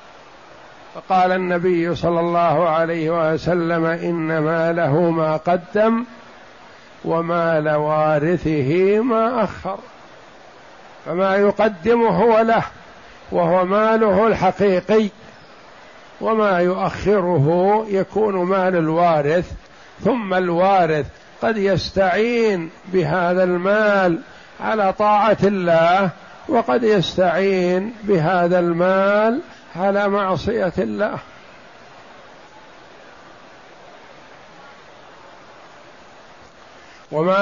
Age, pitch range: 60-79, 170-210 Hz